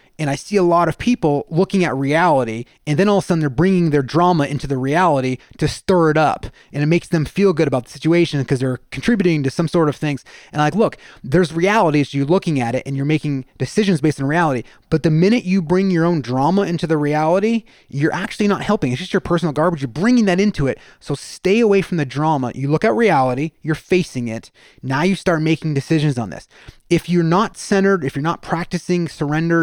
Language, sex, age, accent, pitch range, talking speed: English, male, 30-49, American, 145-180 Hz, 235 wpm